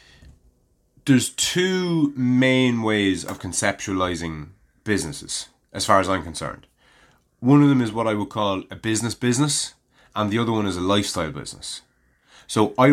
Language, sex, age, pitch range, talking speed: English, male, 30-49, 90-120 Hz, 155 wpm